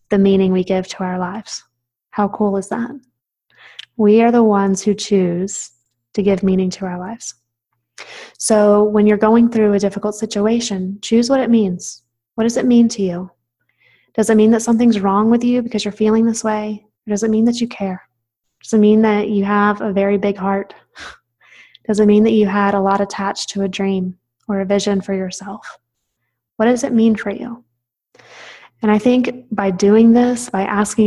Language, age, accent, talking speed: English, 20-39, American, 195 wpm